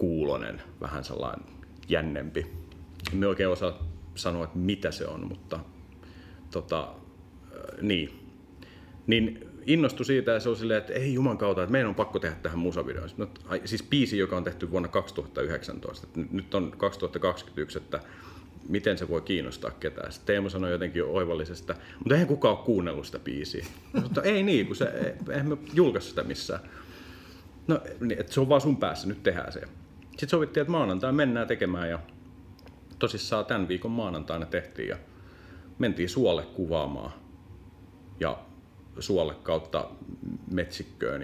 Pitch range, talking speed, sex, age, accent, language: 85-105 Hz, 150 wpm, male, 40-59, native, Finnish